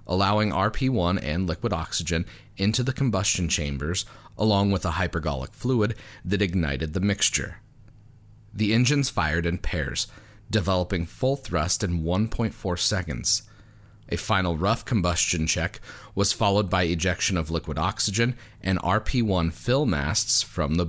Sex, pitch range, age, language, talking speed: male, 85-110 Hz, 30-49, English, 135 wpm